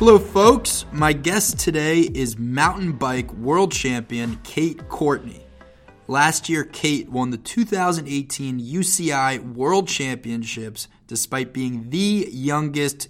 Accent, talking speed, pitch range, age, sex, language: American, 115 wpm, 120-145 Hz, 20-39, male, English